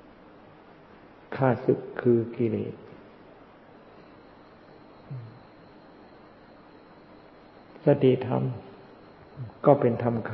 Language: Thai